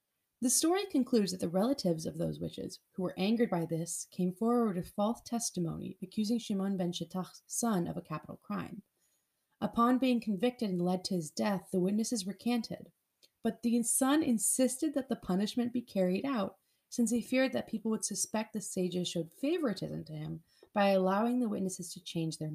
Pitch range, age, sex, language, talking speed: 180-250 Hz, 30-49, female, English, 185 wpm